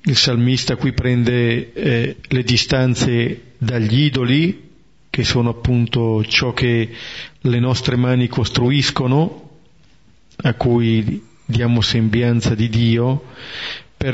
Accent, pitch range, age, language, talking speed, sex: native, 115-140 Hz, 40-59, Italian, 105 wpm, male